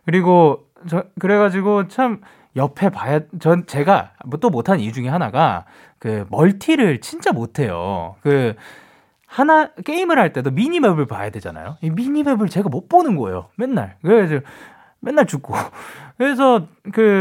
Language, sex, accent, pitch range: Korean, male, native, 135-225 Hz